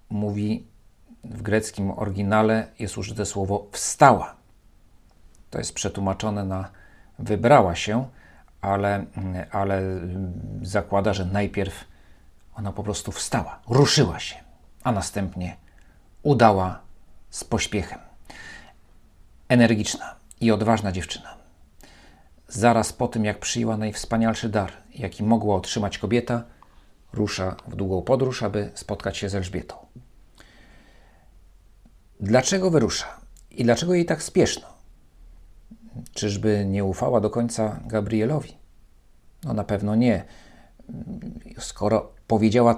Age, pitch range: 40-59, 85-110 Hz